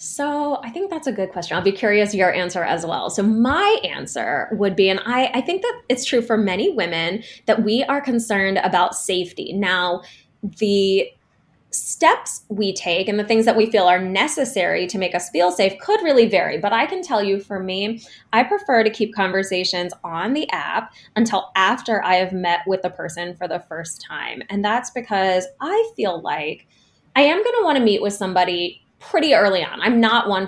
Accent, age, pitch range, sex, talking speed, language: American, 20-39, 180-235 Hz, female, 205 wpm, English